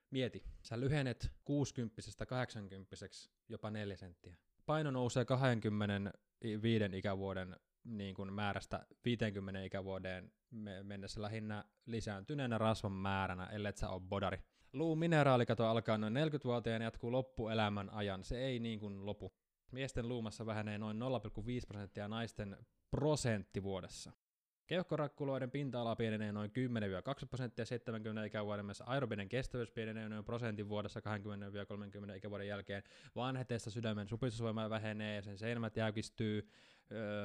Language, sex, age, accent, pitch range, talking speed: Finnish, male, 20-39, native, 100-120 Hz, 115 wpm